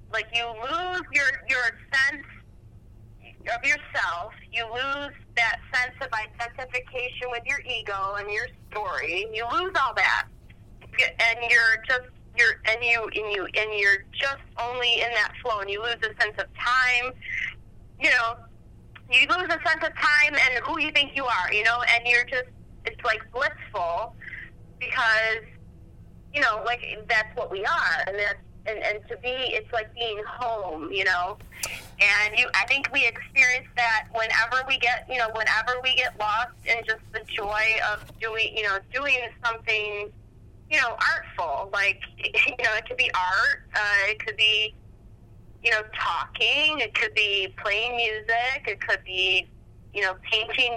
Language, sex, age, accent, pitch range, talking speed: English, female, 30-49, American, 210-255 Hz, 170 wpm